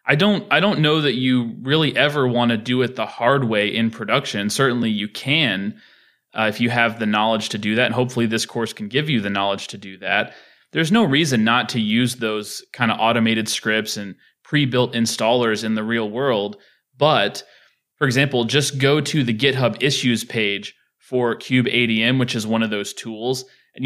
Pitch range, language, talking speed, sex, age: 110-130 Hz, English, 200 wpm, male, 20-39